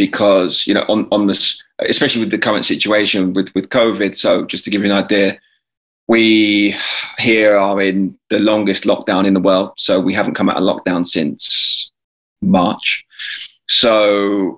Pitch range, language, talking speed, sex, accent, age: 95-110 Hz, English, 170 wpm, male, British, 20-39